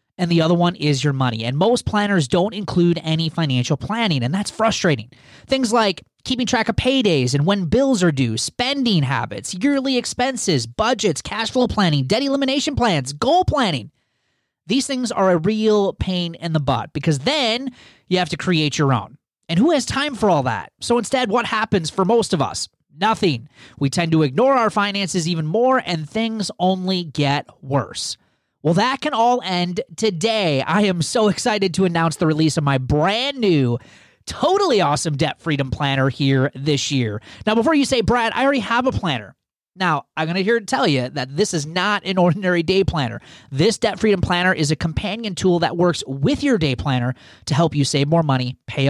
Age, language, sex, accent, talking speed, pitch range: 30-49, English, male, American, 200 wpm, 145-225 Hz